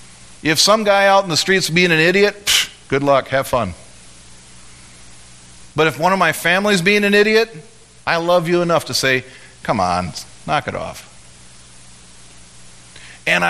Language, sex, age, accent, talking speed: English, male, 40-59, American, 160 wpm